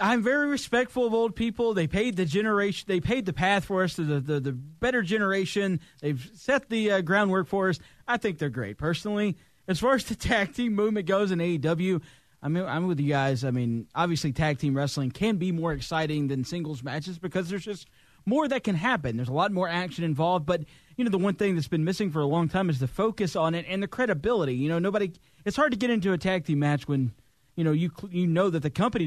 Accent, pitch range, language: American, 150-200 Hz, English